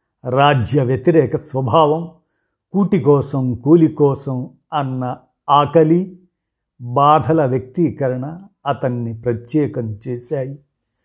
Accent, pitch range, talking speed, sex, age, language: native, 115-150 Hz, 75 wpm, male, 50-69, Telugu